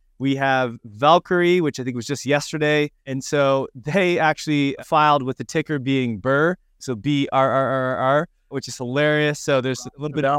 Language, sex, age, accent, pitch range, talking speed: English, male, 20-39, American, 130-155 Hz, 195 wpm